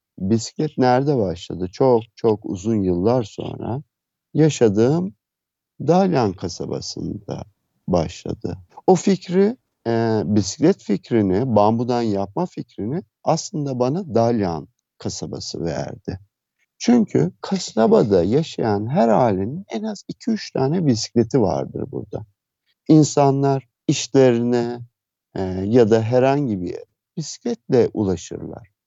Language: Turkish